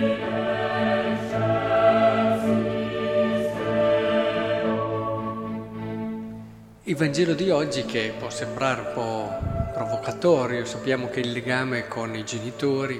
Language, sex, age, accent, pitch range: Italian, male, 50-69, native, 115-160 Hz